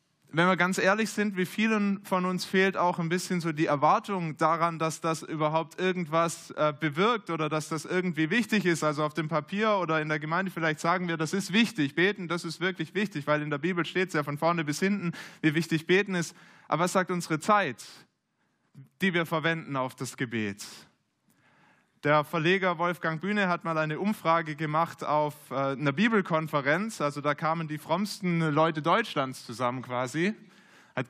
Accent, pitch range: German, 145-180 Hz